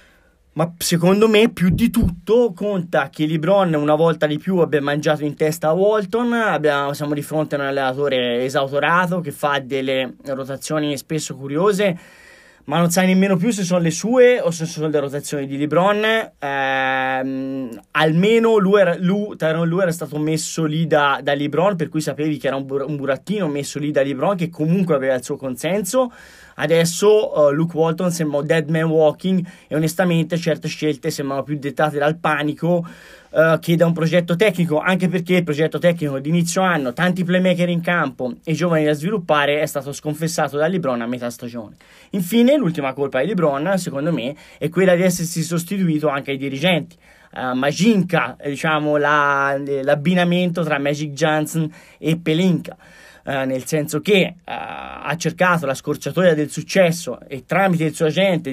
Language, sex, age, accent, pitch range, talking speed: Italian, male, 20-39, native, 145-180 Hz, 165 wpm